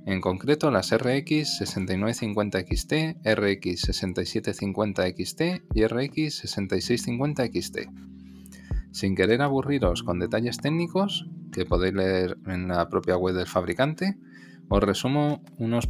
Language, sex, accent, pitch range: Spanish, male, Spanish, 95-145 Hz